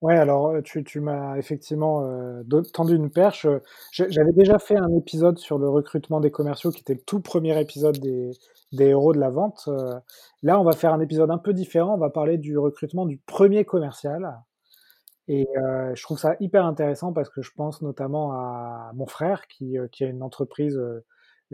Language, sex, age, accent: French, male, 20-39, French